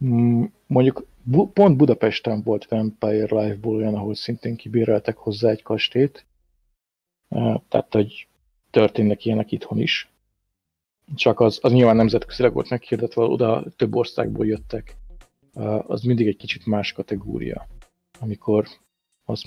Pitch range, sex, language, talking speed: 105-125 Hz, male, Hungarian, 125 wpm